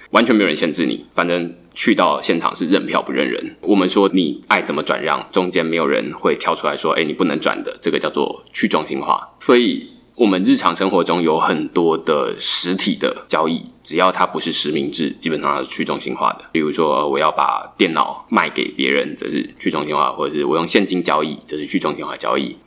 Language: Chinese